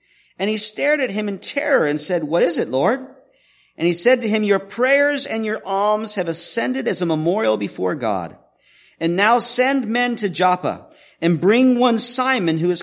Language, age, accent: English, 50-69, American